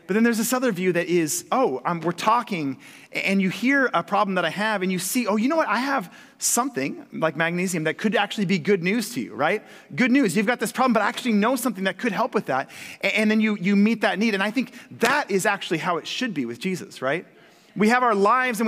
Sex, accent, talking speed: male, American, 265 wpm